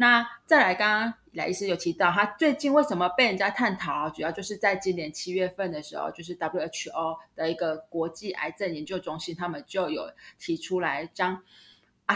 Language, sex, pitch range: Chinese, female, 175-230 Hz